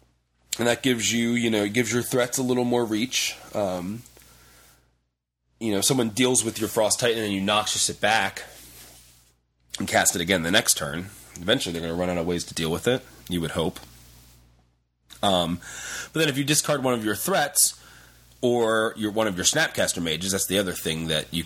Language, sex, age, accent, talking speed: English, male, 30-49, American, 205 wpm